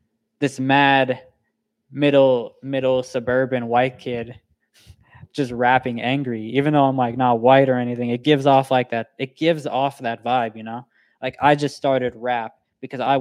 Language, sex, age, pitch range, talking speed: English, male, 20-39, 120-140 Hz, 170 wpm